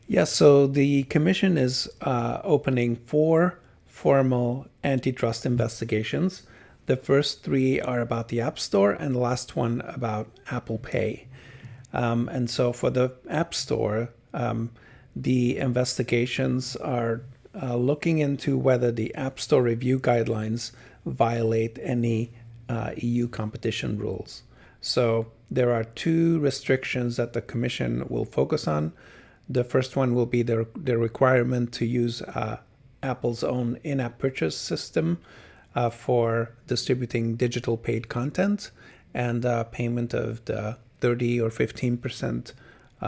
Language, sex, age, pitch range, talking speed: English, male, 50-69, 115-130 Hz, 130 wpm